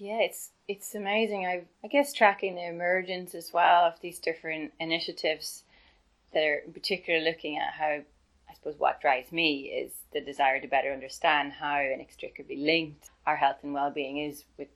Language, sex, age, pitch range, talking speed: English, female, 20-39, 150-175 Hz, 175 wpm